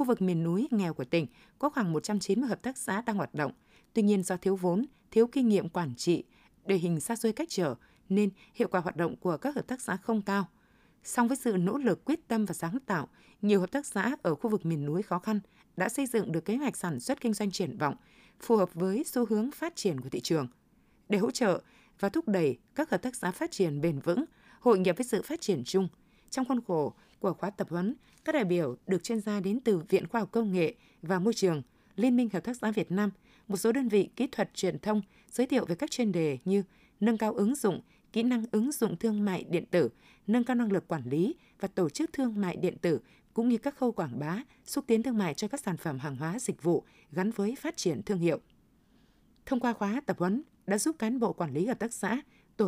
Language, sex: Vietnamese, female